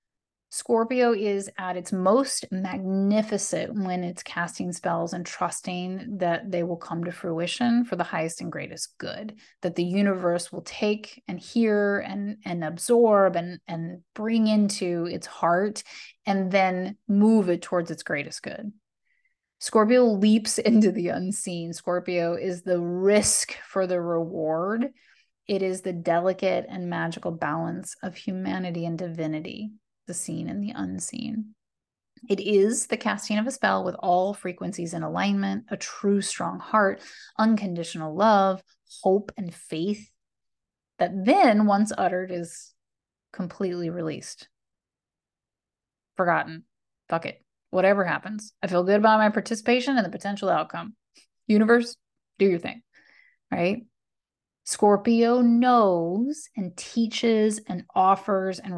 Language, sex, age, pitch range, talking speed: English, female, 30-49, 175-215 Hz, 135 wpm